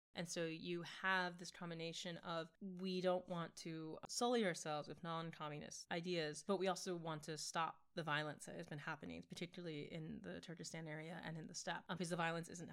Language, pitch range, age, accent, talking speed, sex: English, 165-195 Hz, 20-39, American, 195 wpm, female